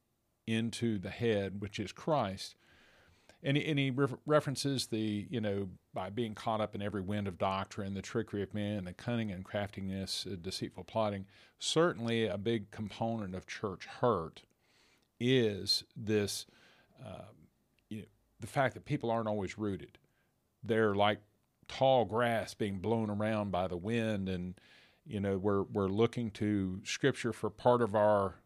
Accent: American